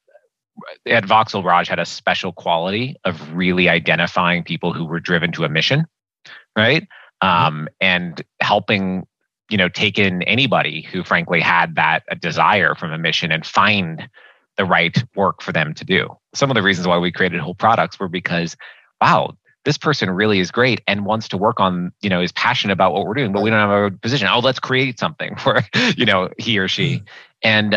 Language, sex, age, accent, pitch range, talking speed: English, male, 30-49, American, 90-135 Hz, 195 wpm